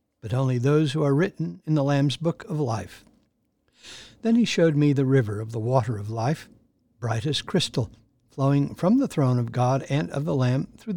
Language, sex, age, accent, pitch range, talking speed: English, male, 60-79, American, 125-160 Hz, 200 wpm